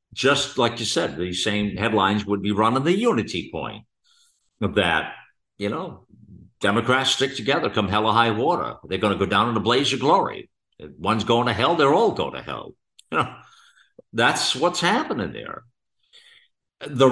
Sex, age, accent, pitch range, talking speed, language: male, 50-69, American, 105-145 Hz, 180 wpm, English